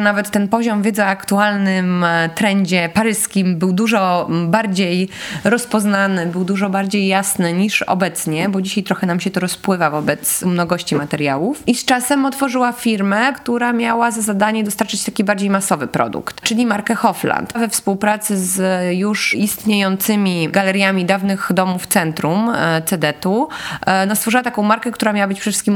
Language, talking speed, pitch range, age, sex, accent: Polish, 160 wpm, 180-215 Hz, 20-39, female, native